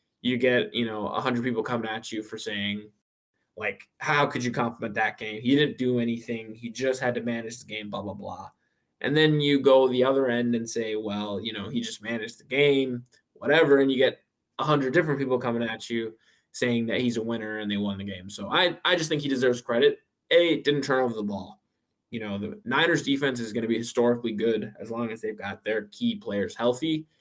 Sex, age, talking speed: male, 20-39, 230 wpm